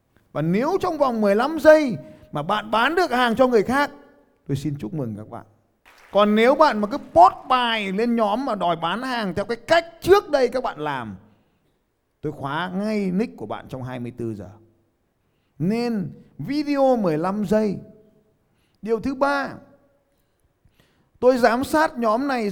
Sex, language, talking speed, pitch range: male, Vietnamese, 165 wpm, 150-255 Hz